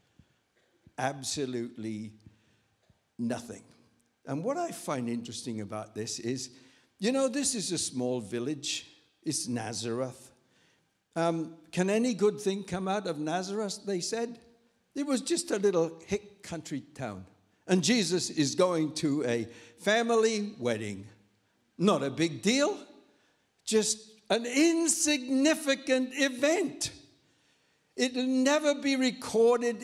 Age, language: 60-79, English